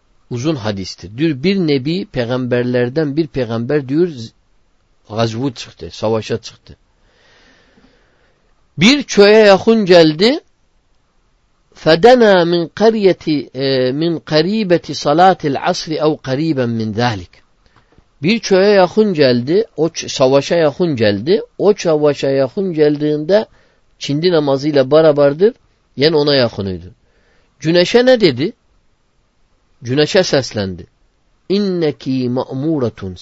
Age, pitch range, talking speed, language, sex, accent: 50-69, 115-170 Hz, 100 wpm, Turkish, male, native